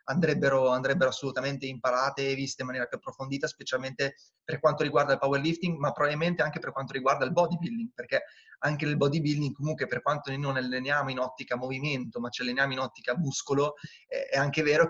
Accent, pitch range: native, 135-155 Hz